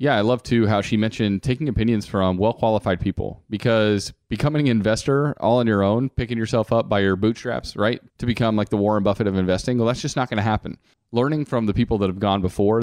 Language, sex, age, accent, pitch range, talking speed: English, male, 30-49, American, 100-125 Hz, 235 wpm